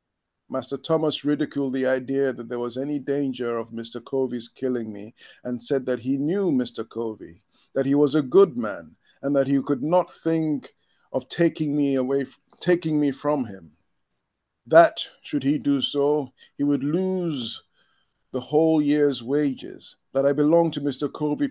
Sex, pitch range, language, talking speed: male, 120-145 Hz, English, 165 wpm